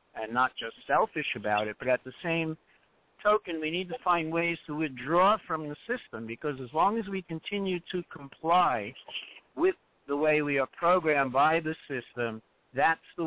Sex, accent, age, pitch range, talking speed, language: male, American, 60-79, 135-180 Hz, 180 wpm, English